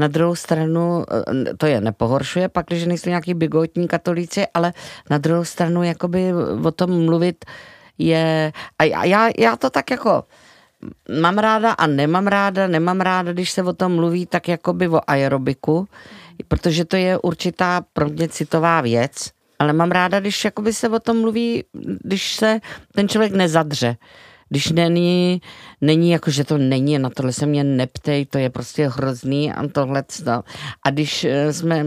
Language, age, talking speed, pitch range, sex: Czech, 40-59, 160 wpm, 140-175 Hz, female